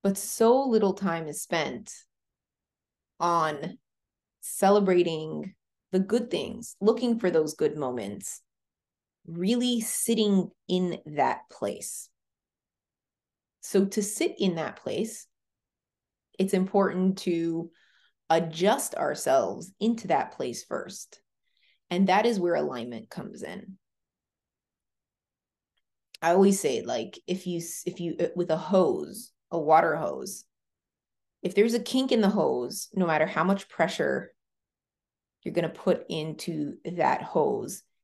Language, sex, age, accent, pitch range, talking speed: English, female, 30-49, American, 170-205 Hz, 120 wpm